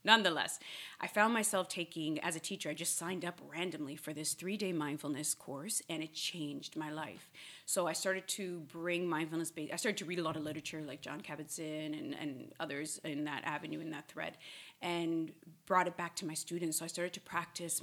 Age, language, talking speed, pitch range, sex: 30-49, English, 200 wpm, 155-180 Hz, female